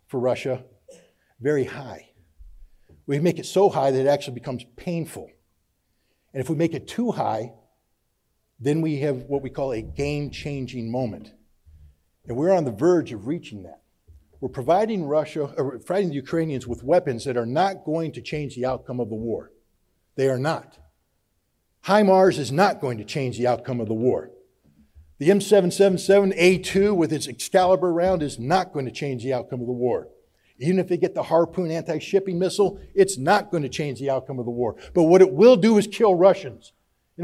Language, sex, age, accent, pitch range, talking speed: English, male, 60-79, American, 125-180 Hz, 185 wpm